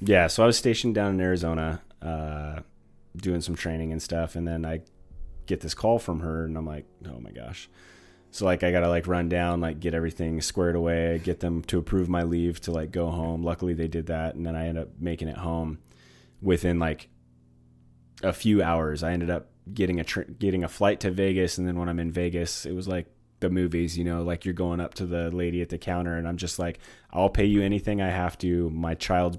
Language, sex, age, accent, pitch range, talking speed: English, male, 30-49, American, 80-95 Hz, 235 wpm